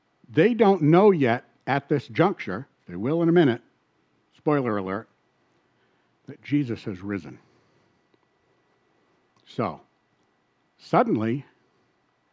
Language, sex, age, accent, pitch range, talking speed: English, male, 60-79, American, 120-180 Hz, 95 wpm